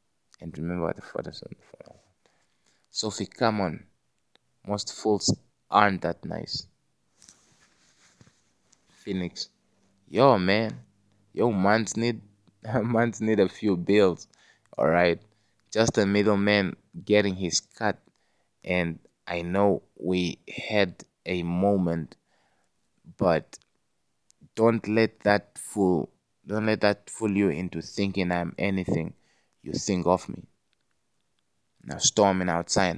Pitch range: 90-105 Hz